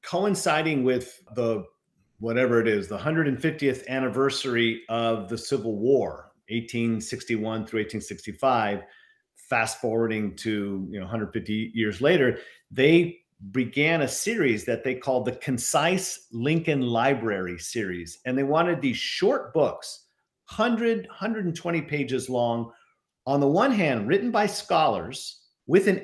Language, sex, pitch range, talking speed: English, male, 125-195 Hz, 120 wpm